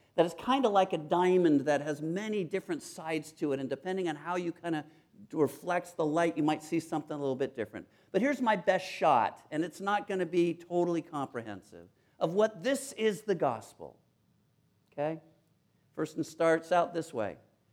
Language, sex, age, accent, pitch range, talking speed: English, male, 50-69, American, 155-215 Hz, 195 wpm